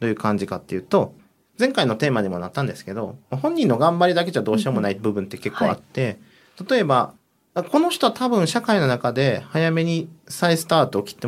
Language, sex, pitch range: Japanese, male, 120-180 Hz